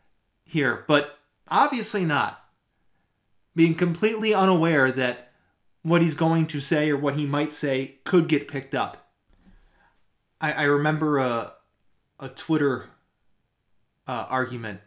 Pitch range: 125-180 Hz